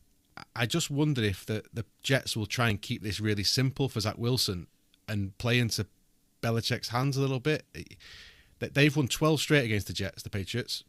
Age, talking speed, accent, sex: 30-49, 200 wpm, British, male